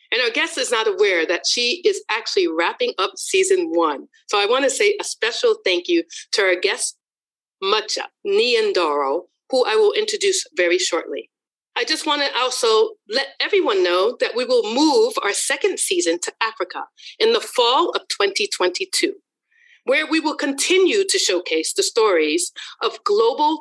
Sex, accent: female, American